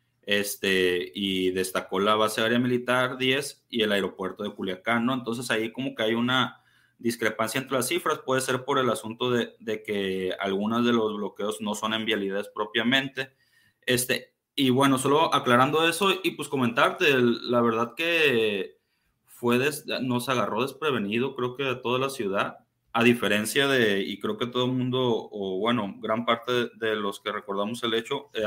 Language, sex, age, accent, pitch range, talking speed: Spanish, male, 30-49, Mexican, 105-125 Hz, 180 wpm